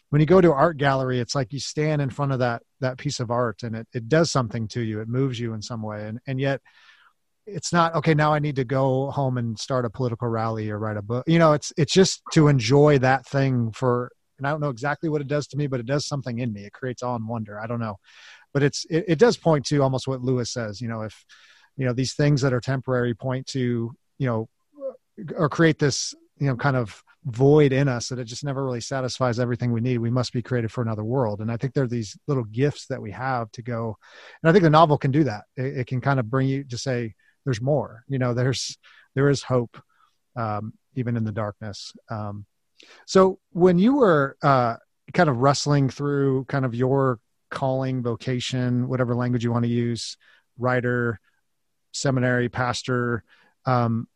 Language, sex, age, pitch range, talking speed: English, male, 30-49, 120-145 Hz, 230 wpm